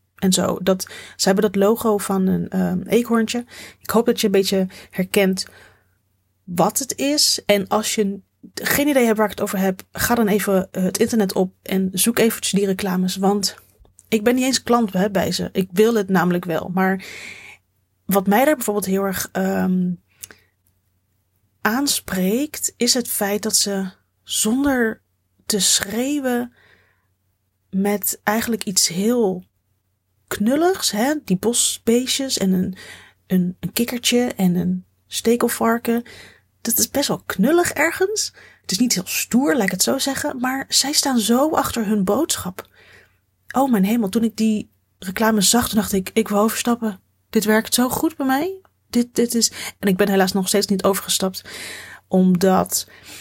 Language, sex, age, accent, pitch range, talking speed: Dutch, female, 30-49, Dutch, 185-235 Hz, 160 wpm